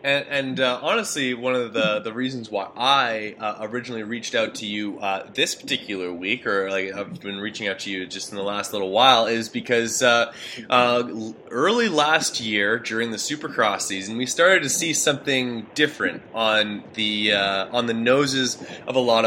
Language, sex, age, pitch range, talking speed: English, male, 20-39, 110-130 Hz, 190 wpm